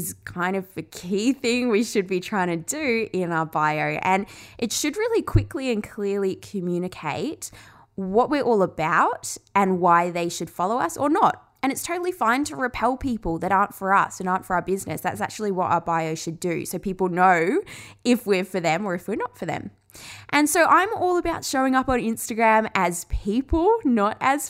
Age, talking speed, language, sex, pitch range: 20-39, 205 wpm, English, female, 180-265 Hz